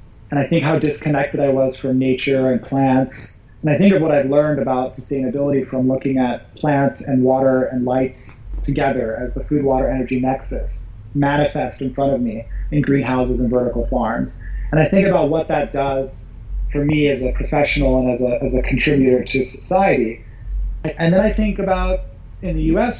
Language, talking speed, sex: English, 190 wpm, male